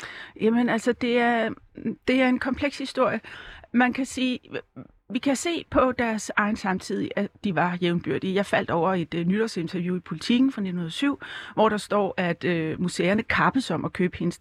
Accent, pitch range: native, 185-235 Hz